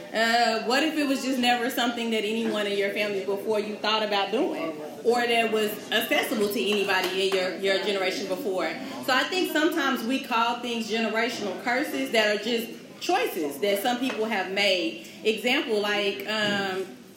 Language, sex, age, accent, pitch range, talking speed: English, female, 30-49, American, 205-245 Hz, 175 wpm